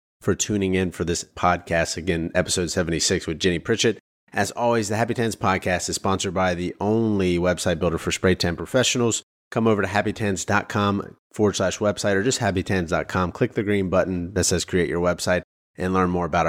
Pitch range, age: 85-105 Hz, 30-49